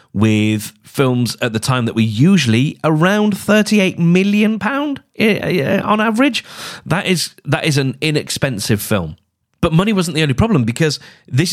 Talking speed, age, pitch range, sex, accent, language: 150 wpm, 30-49, 100-145 Hz, male, British, English